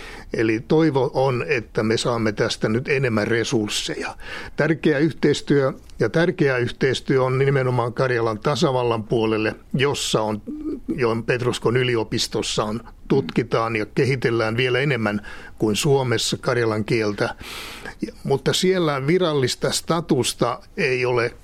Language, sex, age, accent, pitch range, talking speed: Finnish, male, 60-79, native, 110-135 Hz, 110 wpm